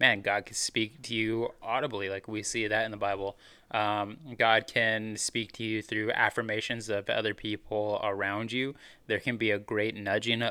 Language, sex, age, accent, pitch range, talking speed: English, male, 20-39, American, 105-120 Hz, 190 wpm